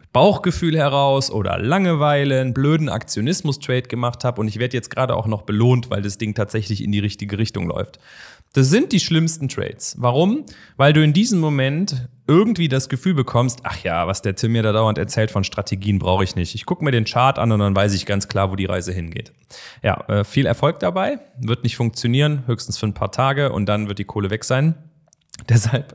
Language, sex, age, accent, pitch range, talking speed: German, male, 30-49, German, 105-140 Hz, 210 wpm